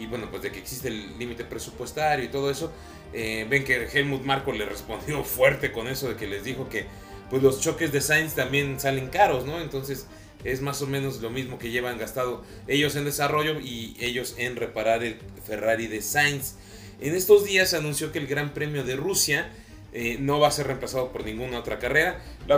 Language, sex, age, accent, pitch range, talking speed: Spanish, male, 30-49, Mexican, 115-150 Hz, 210 wpm